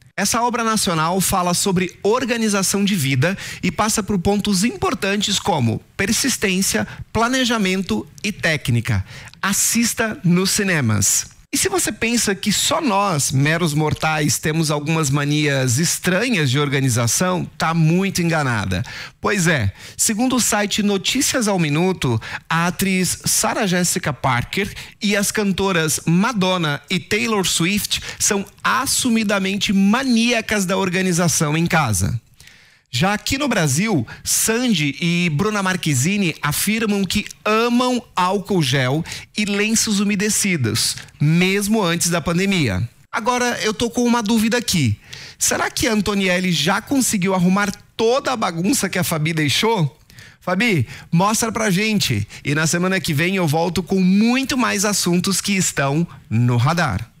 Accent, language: Brazilian, English